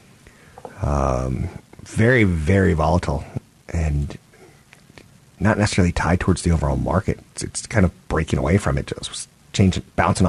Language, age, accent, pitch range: English, 30-49, American, 85-105 Hz